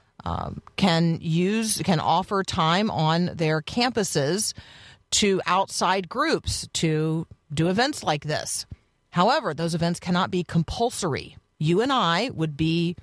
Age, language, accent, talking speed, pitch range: 40-59, English, American, 130 wpm, 140-180 Hz